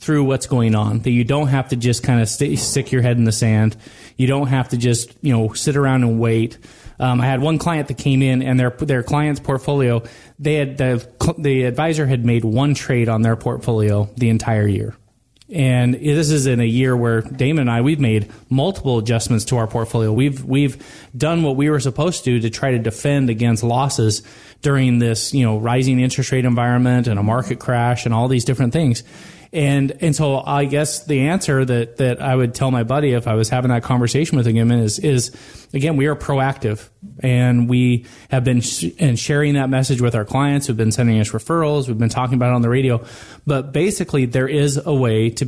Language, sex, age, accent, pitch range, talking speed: English, male, 30-49, American, 115-140 Hz, 220 wpm